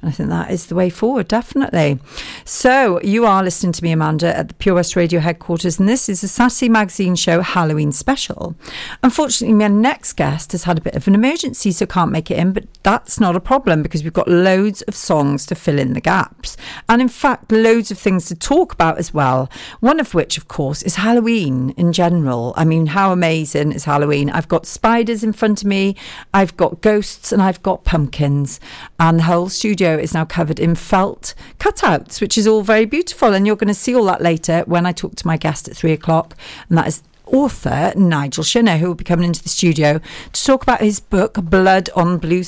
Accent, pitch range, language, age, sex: British, 165-220 Hz, Japanese, 40-59, female